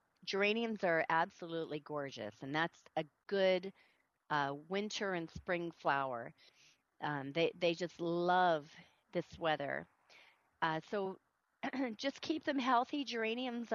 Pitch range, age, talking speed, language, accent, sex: 170-225 Hz, 40-59, 120 wpm, English, American, female